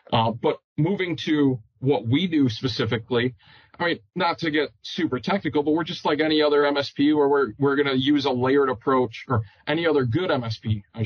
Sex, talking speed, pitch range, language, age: male, 200 wpm, 120-145 Hz, English, 40-59